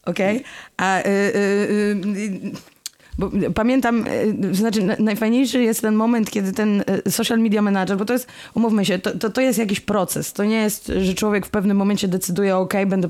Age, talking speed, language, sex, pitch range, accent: 20-39, 185 wpm, Polish, female, 165-205 Hz, native